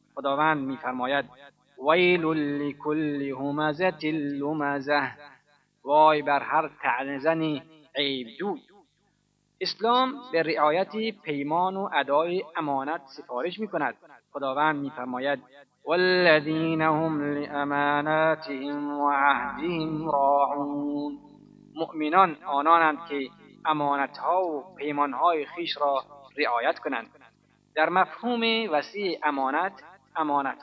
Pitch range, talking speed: 140-175 Hz, 80 wpm